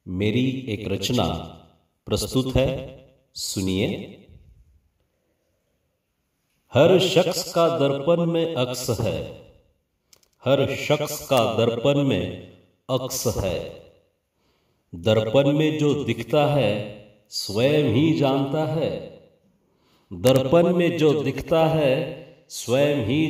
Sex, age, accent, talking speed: male, 50-69, native, 95 wpm